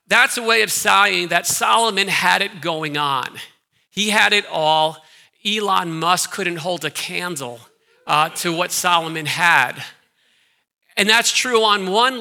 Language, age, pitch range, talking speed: English, 50-69, 155-195 Hz, 150 wpm